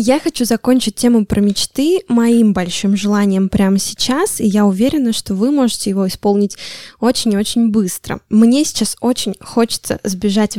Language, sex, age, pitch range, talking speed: Russian, female, 10-29, 205-250 Hz, 145 wpm